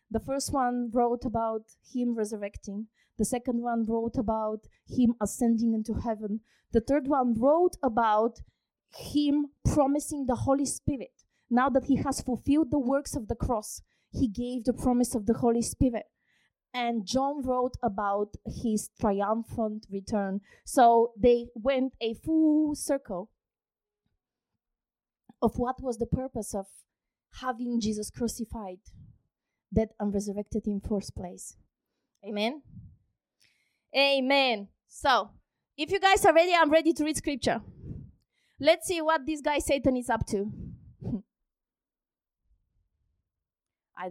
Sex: female